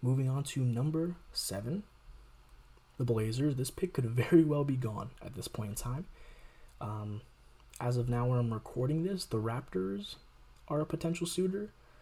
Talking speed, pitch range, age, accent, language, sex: 165 wpm, 115-150 Hz, 20-39, American, English, male